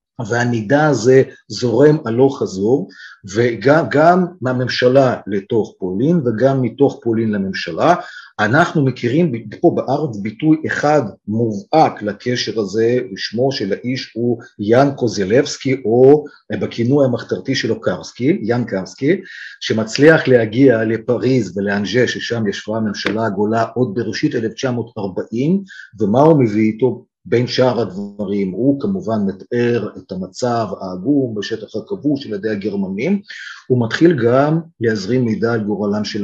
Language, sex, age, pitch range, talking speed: Hebrew, male, 50-69, 110-140 Hz, 120 wpm